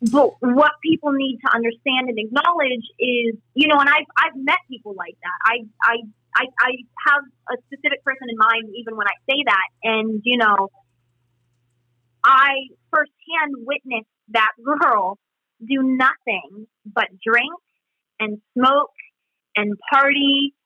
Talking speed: 140 wpm